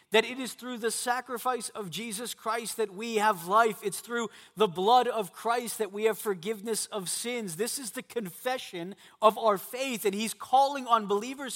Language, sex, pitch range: English, male, 200-255 Hz